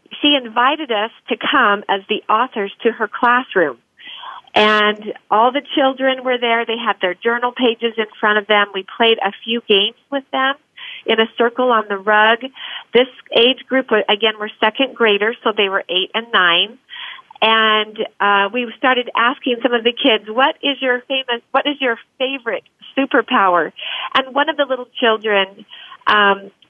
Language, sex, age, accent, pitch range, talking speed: English, female, 40-59, American, 220-270 Hz, 175 wpm